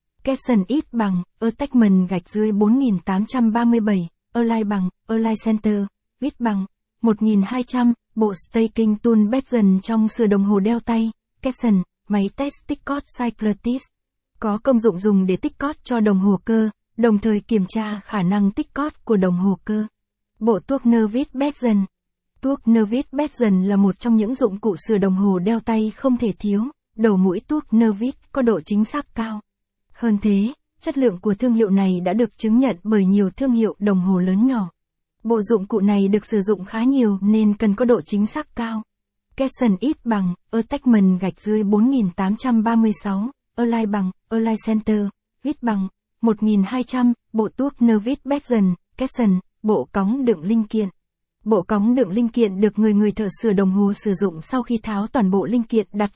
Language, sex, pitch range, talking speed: Vietnamese, female, 200-240 Hz, 180 wpm